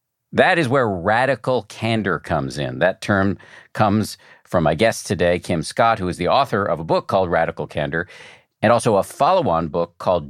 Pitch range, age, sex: 85-120 Hz, 50-69, male